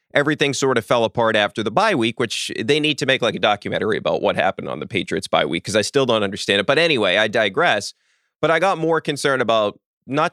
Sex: male